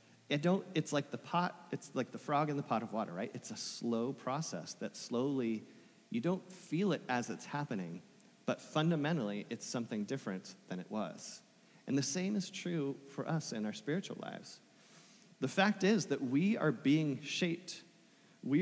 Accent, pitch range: American, 135-205 Hz